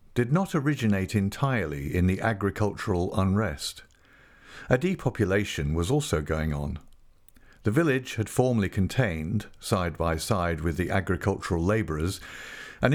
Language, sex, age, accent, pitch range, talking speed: English, male, 50-69, British, 85-125 Hz, 125 wpm